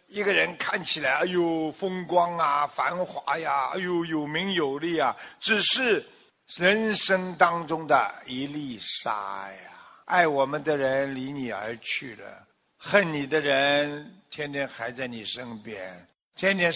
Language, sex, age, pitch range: Chinese, male, 50-69, 155-220 Hz